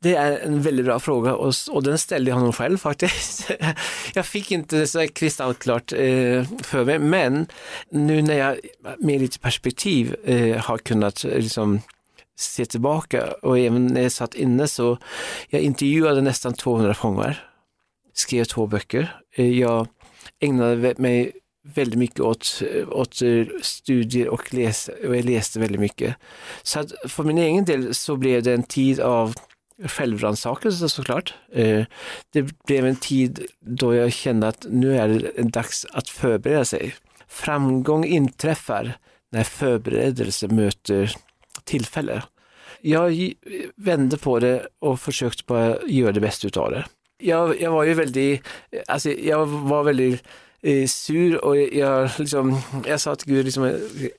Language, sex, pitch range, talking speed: Swedish, male, 120-150 Hz, 135 wpm